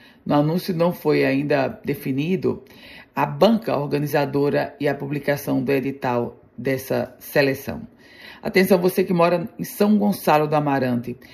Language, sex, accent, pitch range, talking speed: Portuguese, female, Brazilian, 140-170 Hz, 130 wpm